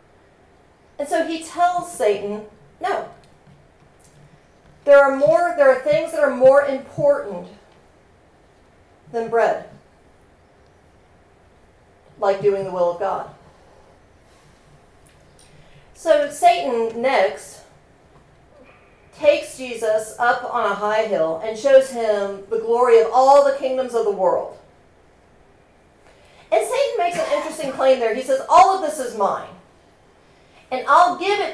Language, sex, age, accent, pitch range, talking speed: English, female, 40-59, American, 210-305 Hz, 120 wpm